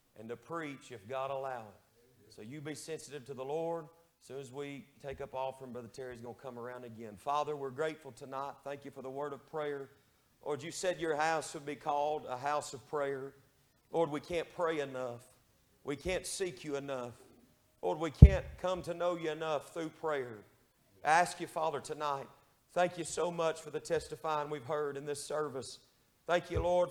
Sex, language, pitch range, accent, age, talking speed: male, English, 130-165 Hz, American, 40-59, 205 wpm